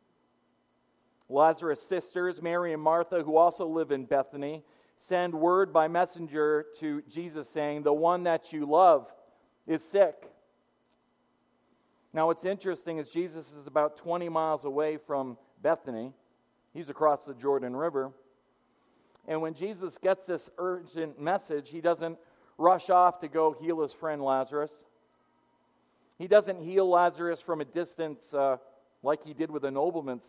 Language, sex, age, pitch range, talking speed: English, male, 40-59, 150-190 Hz, 145 wpm